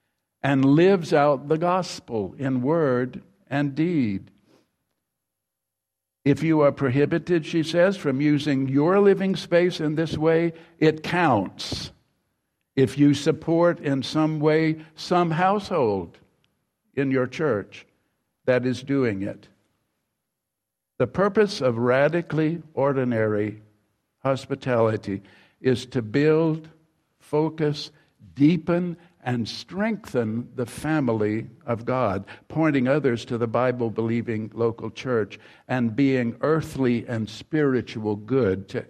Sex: male